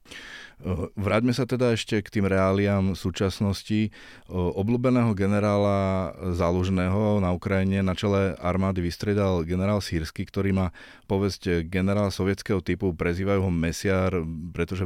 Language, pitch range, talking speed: Slovak, 85-95 Hz, 115 wpm